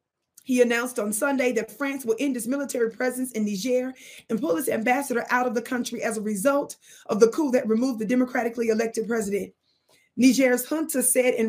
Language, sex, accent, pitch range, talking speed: English, female, American, 225-270 Hz, 195 wpm